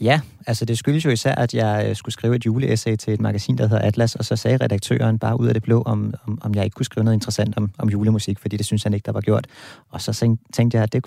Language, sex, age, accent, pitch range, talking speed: Danish, male, 30-49, native, 110-135 Hz, 280 wpm